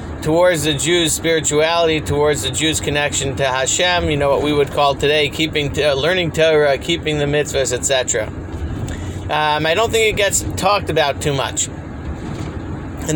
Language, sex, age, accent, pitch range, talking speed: English, male, 40-59, American, 135-170 Hz, 160 wpm